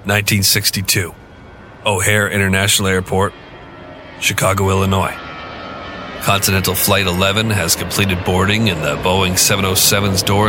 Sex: male